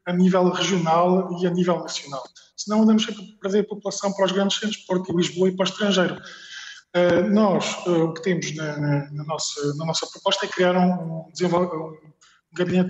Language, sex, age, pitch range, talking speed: Portuguese, male, 20-39, 160-190 Hz, 170 wpm